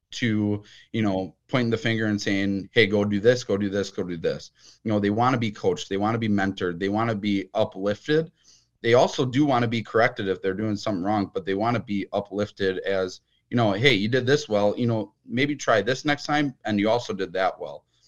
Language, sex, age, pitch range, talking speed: English, male, 30-49, 95-115 Hz, 245 wpm